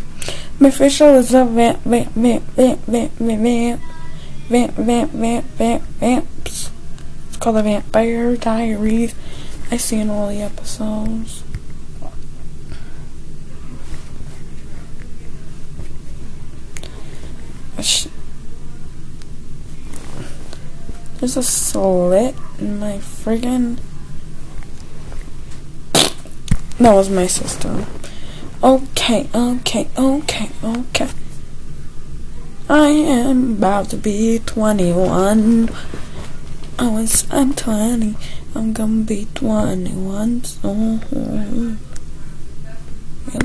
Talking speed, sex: 80 wpm, female